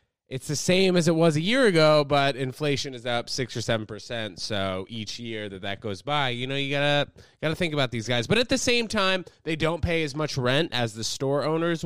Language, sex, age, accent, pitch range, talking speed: English, male, 20-39, American, 115-145 Hz, 245 wpm